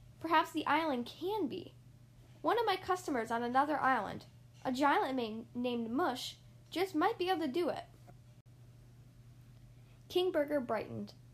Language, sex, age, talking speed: English, female, 10-29, 145 wpm